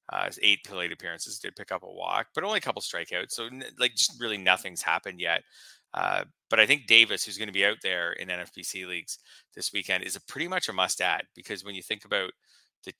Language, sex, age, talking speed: English, male, 30-49, 240 wpm